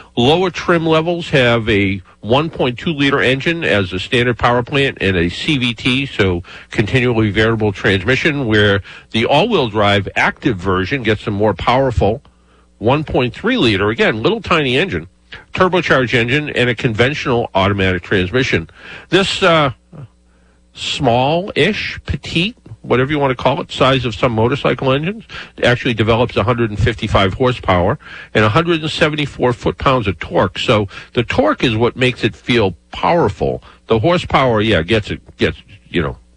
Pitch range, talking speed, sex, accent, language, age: 100-140 Hz, 135 wpm, male, American, English, 50-69